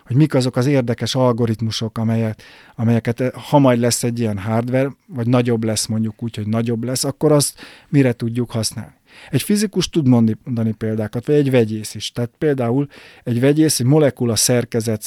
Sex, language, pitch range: male, Hungarian, 115-130 Hz